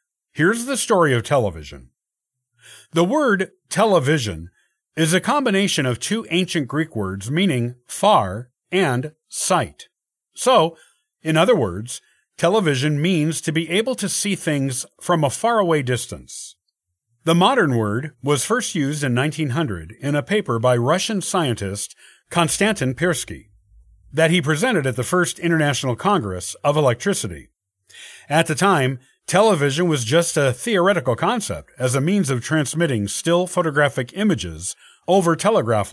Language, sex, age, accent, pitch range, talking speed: English, male, 50-69, American, 120-175 Hz, 135 wpm